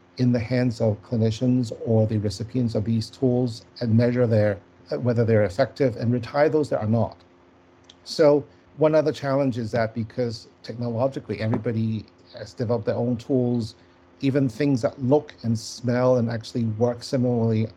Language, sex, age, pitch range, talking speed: English, male, 50-69, 110-135 Hz, 160 wpm